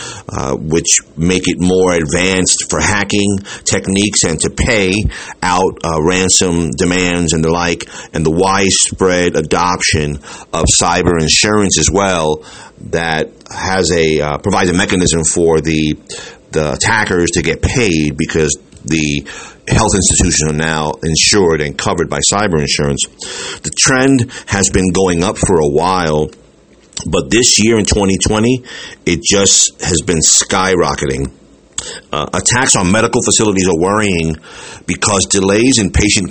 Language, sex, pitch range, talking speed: English, male, 80-100 Hz, 140 wpm